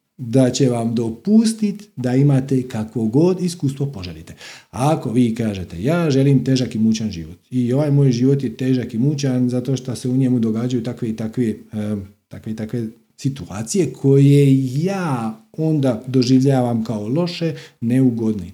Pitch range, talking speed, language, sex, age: 110-160 Hz, 150 wpm, Croatian, male, 40-59